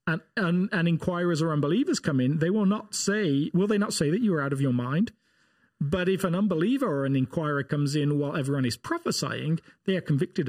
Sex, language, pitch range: male, English, 145-205 Hz